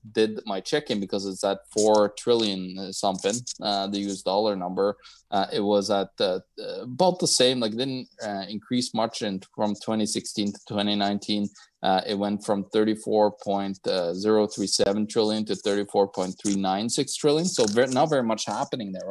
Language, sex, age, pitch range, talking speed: English, male, 20-39, 100-115 Hz, 150 wpm